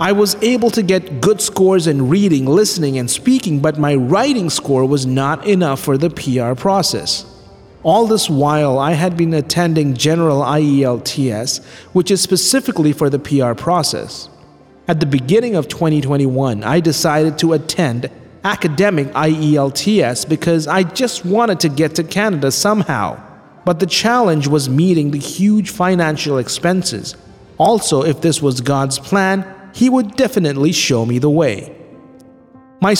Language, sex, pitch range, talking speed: English, male, 140-190 Hz, 150 wpm